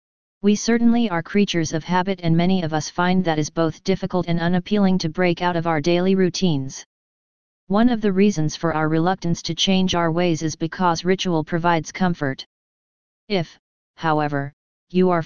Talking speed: 175 wpm